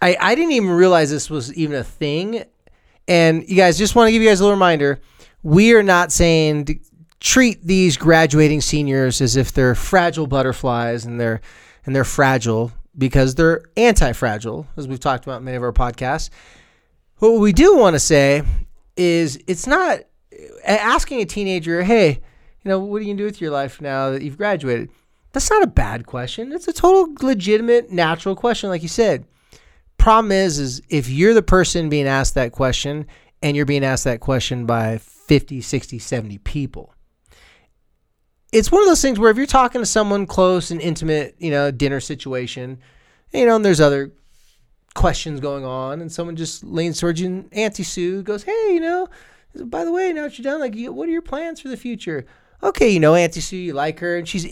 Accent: American